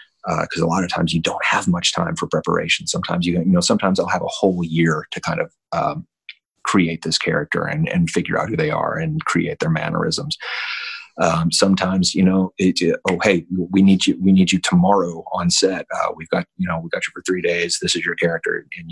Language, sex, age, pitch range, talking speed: English, male, 30-49, 85-95 Hz, 235 wpm